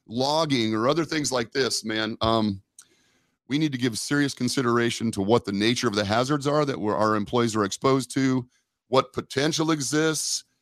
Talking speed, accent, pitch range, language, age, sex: 180 wpm, American, 115-135 Hz, English, 40-59, male